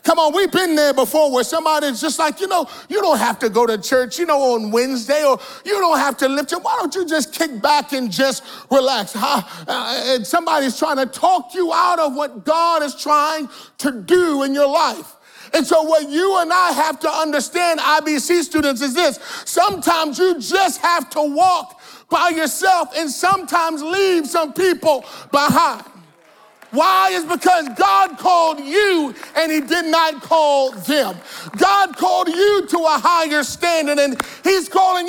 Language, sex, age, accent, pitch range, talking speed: English, male, 30-49, American, 265-345 Hz, 180 wpm